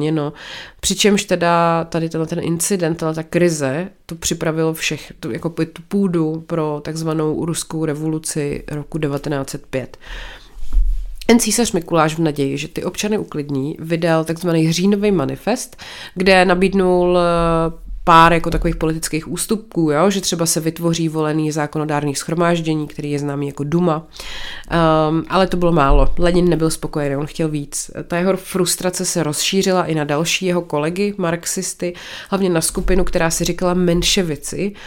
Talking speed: 145 wpm